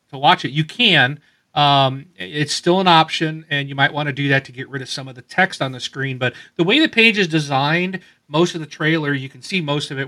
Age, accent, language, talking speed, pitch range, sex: 40-59, American, English, 270 wpm, 125-155 Hz, male